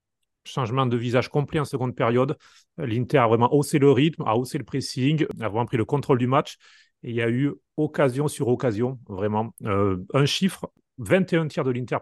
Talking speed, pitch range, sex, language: 200 wpm, 115-140 Hz, male, French